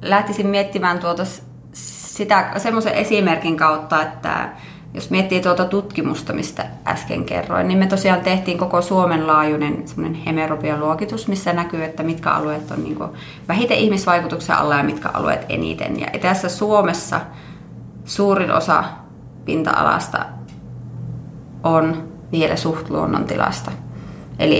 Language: Finnish